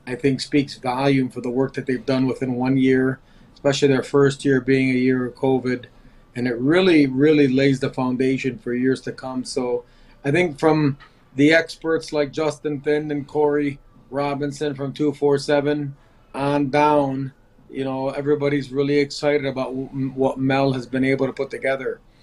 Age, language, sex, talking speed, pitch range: 30-49, English, male, 170 wpm, 130-145 Hz